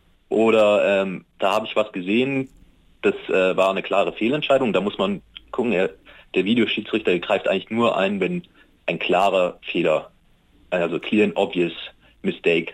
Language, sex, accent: German, male, German